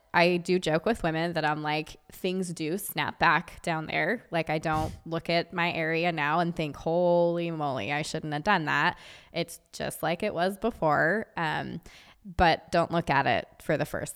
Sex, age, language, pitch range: female, 20-39, English, 160-185 Hz